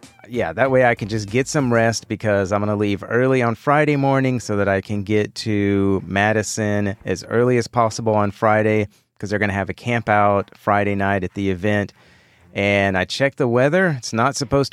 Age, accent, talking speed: 30-49, American, 210 wpm